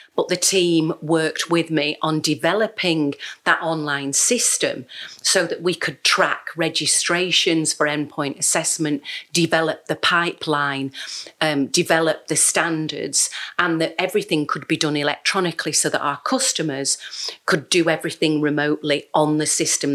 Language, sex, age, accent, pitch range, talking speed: English, female, 40-59, British, 145-175 Hz, 135 wpm